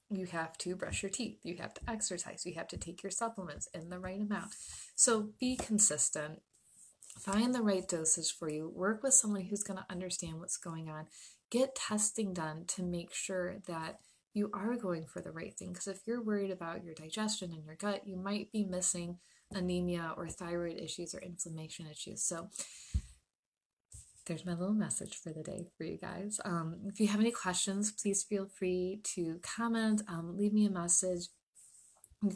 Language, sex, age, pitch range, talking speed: English, female, 30-49, 175-205 Hz, 190 wpm